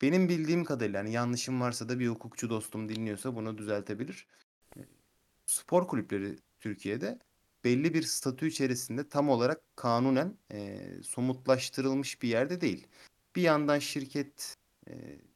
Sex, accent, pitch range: male, native, 110-150 Hz